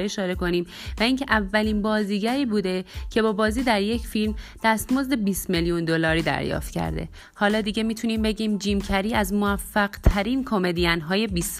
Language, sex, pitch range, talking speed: Persian, female, 180-220 Hz, 160 wpm